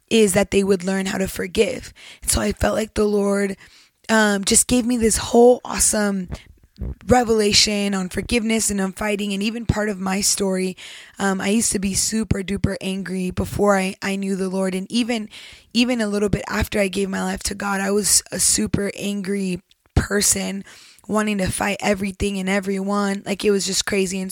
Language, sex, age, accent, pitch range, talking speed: English, female, 10-29, American, 195-215 Hz, 195 wpm